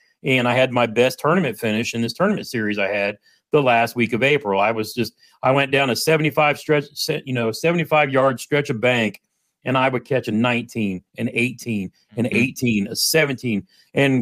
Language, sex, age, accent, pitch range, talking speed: English, male, 40-59, American, 115-145 Hz, 200 wpm